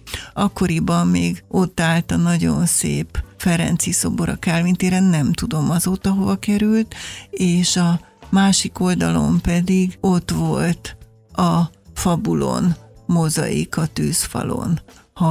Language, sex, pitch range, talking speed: Hungarian, female, 170-190 Hz, 105 wpm